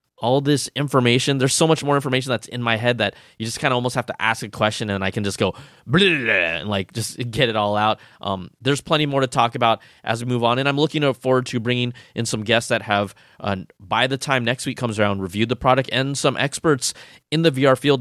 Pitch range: 110-130 Hz